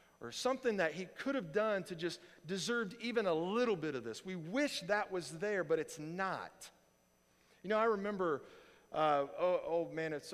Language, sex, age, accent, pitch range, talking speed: English, male, 40-59, American, 140-180 Hz, 190 wpm